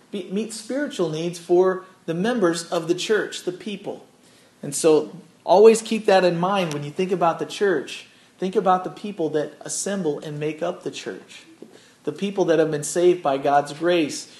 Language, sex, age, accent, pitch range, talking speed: English, male, 40-59, American, 160-195 Hz, 185 wpm